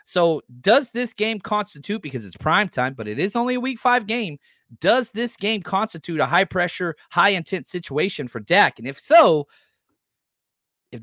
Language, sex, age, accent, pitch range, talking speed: English, male, 30-49, American, 140-210 Hz, 180 wpm